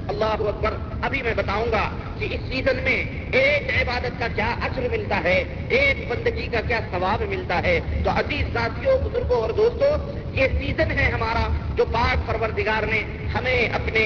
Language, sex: Urdu, male